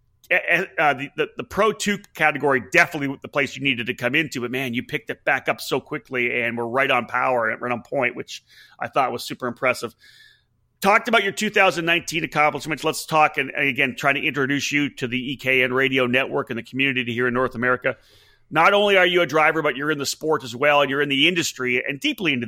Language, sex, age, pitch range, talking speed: English, male, 30-49, 130-165 Hz, 230 wpm